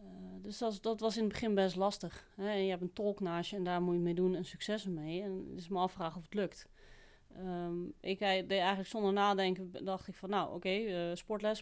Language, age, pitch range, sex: Dutch, 30-49, 170-195 Hz, female